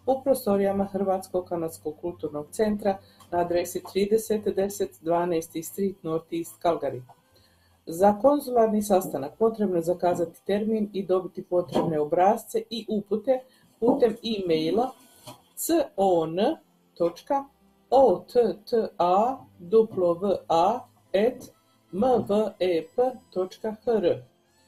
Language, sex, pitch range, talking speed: Croatian, female, 175-220 Hz, 75 wpm